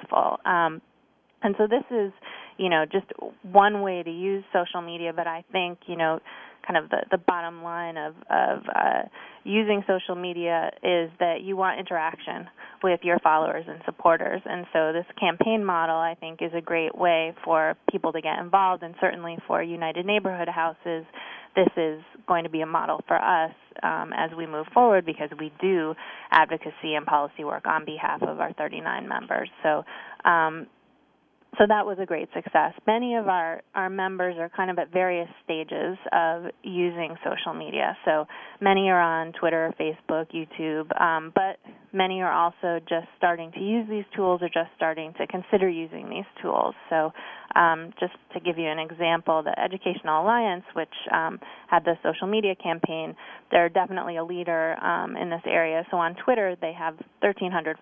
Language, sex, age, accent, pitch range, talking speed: English, female, 20-39, American, 165-190 Hz, 175 wpm